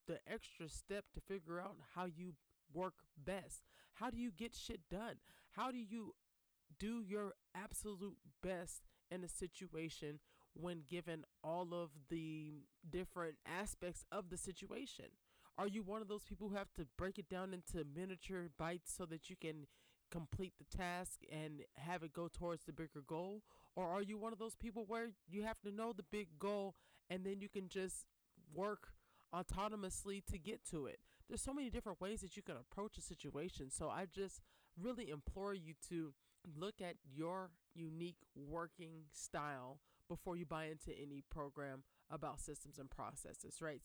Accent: American